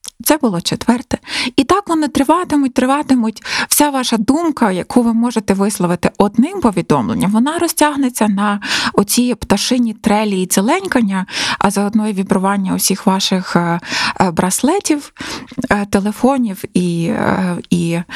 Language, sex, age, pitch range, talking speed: Ukrainian, female, 20-39, 190-255 Hz, 115 wpm